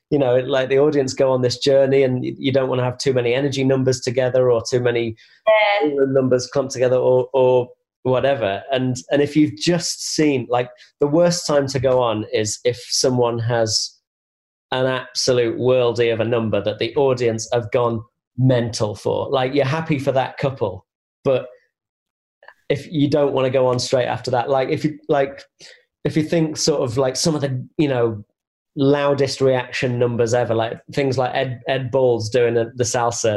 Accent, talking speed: British, 185 wpm